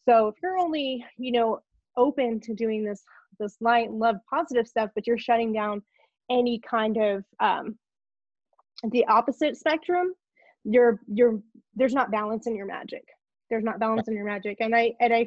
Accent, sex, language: American, female, English